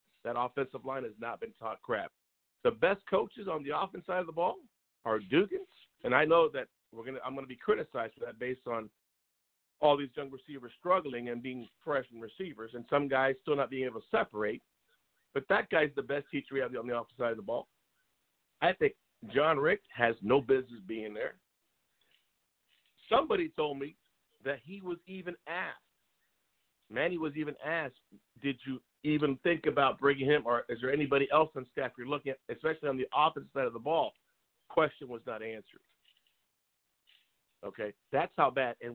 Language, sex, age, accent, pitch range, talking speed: English, male, 50-69, American, 130-175 Hz, 195 wpm